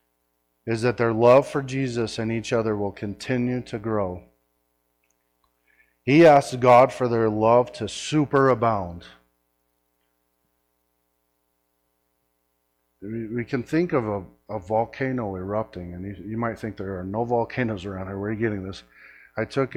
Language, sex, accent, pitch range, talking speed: English, male, American, 90-120 Hz, 140 wpm